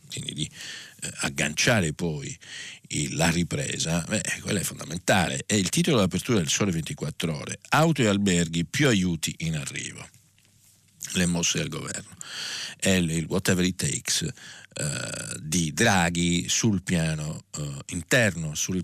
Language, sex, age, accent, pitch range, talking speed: Italian, male, 50-69, native, 85-115 Hz, 135 wpm